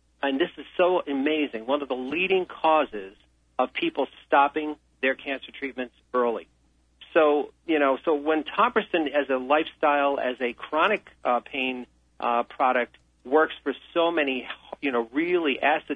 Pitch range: 125-150 Hz